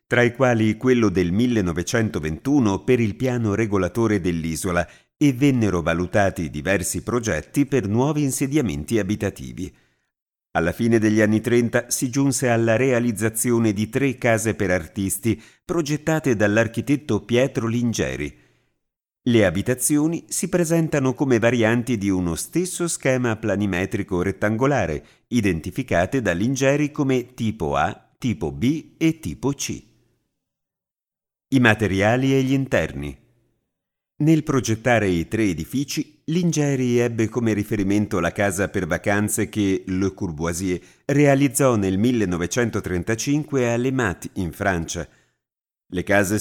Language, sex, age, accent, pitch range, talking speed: Italian, male, 50-69, native, 95-135 Hz, 120 wpm